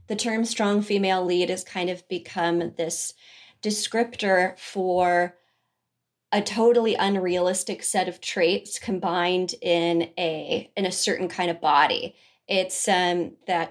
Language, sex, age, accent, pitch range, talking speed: English, female, 20-39, American, 175-205 Hz, 130 wpm